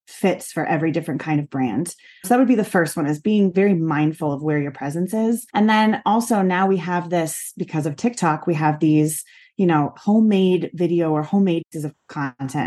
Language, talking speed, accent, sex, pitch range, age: English, 210 wpm, American, female, 155-195 Hz, 30-49